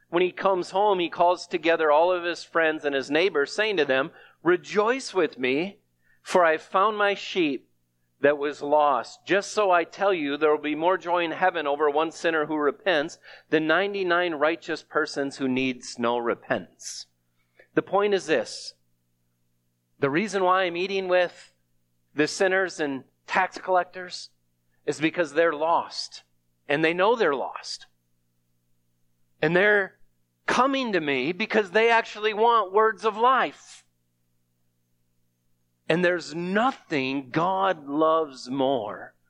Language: English